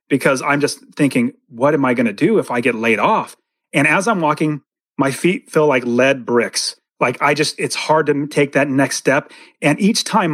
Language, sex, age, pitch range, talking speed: English, male, 30-49, 135-185 Hz, 215 wpm